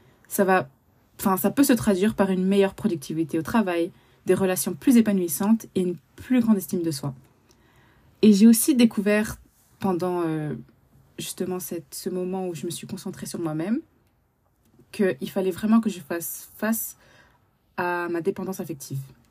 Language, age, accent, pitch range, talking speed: French, 20-39, French, 170-215 Hz, 160 wpm